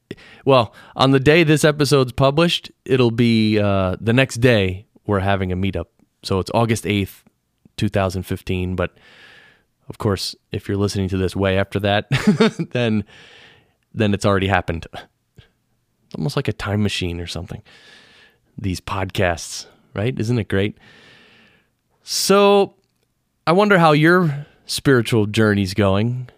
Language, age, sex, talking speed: English, 30-49, male, 135 wpm